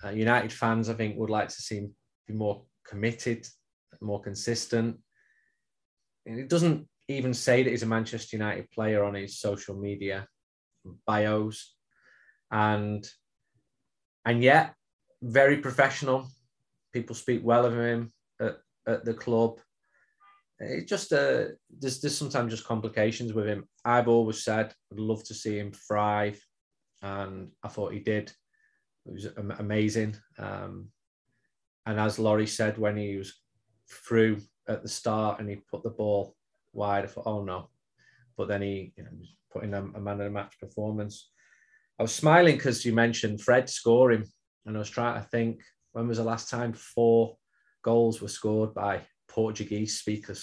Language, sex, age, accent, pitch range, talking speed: English, male, 20-39, British, 105-120 Hz, 155 wpm